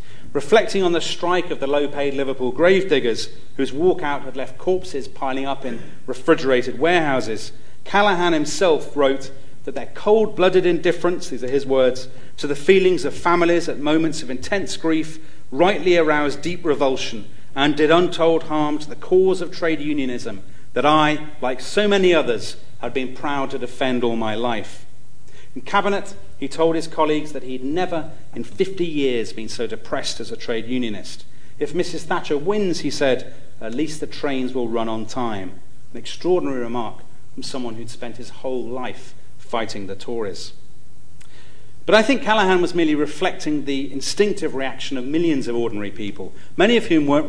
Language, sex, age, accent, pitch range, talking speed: English, male, 40-59, British, 125-170 Hz, 170 wpm